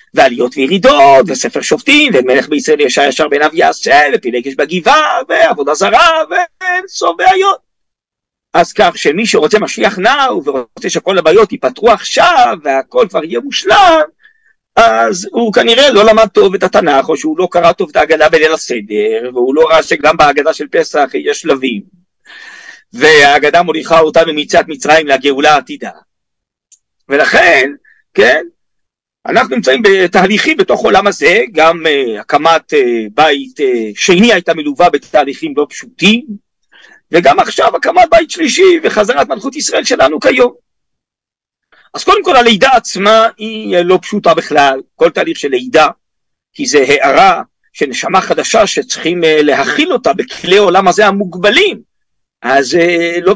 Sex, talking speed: male, 135 wpm